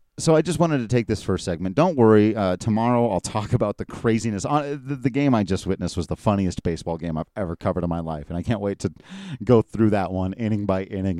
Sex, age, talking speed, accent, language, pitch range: male, 40-59, 265 wpm, American, English, 90-115 Hz